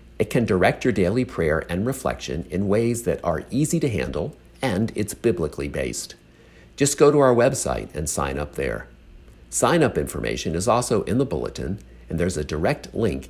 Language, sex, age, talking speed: English, male, 50-69, 185 wpm